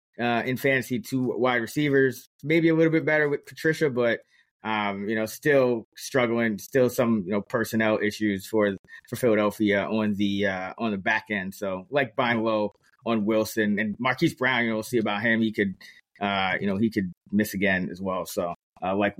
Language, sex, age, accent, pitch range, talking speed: English, male, 20-39, American, 110-145 Hz, 200 wpm